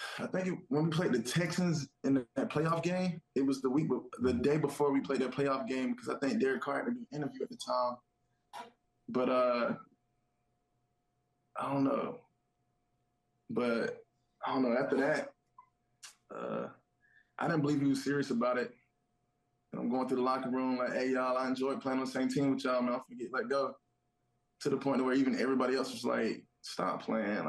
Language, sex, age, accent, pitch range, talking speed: English, male, 20-39, American, 125-145 Hz, 205 wpm